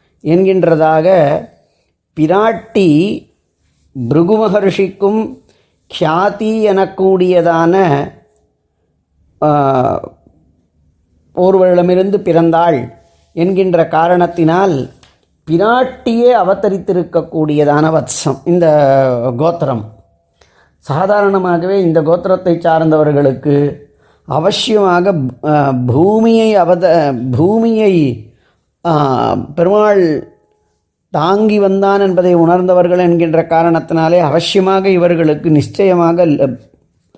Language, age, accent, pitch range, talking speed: Tamil, 30-49, native, 145-185 Hz, 50 wpm